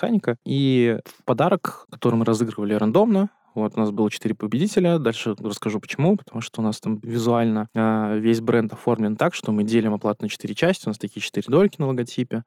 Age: 20-39